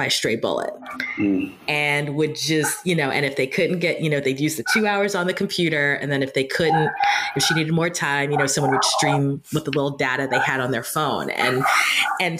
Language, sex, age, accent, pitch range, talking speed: English, female, 30-49, American, 135-175 Hz, 235 wpm